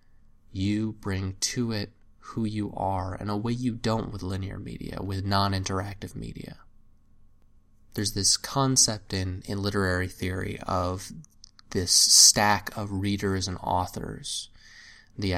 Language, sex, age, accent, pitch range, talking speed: English, male, 20-39, American, 95-110 Hz, 130 wpm